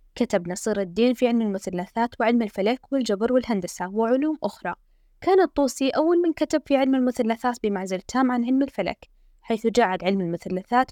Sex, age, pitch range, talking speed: female, 10-29, 195-255 Hz, 160 wpm